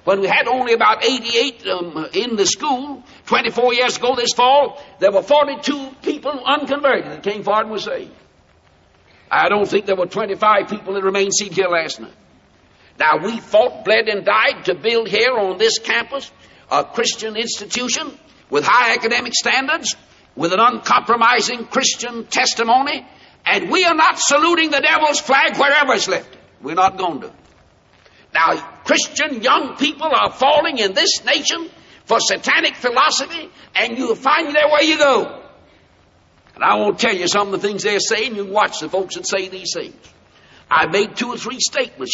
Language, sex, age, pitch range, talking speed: English, male, 60-79, 205-295 Hz, 175 wpm